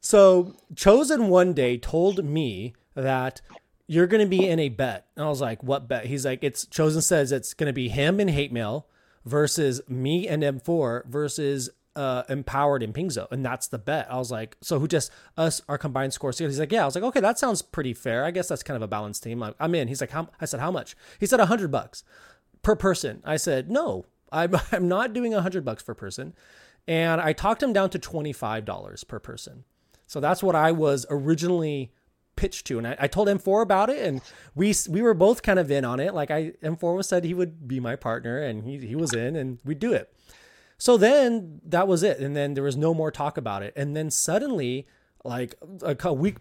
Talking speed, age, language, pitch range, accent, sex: 225 wpm, 30-49, English, 135-185 Hz, American, male